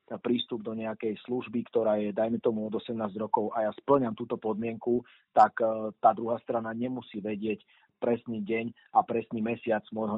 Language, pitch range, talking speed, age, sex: Slovak, 100-115 Hz, 165 wpm, 40-59, male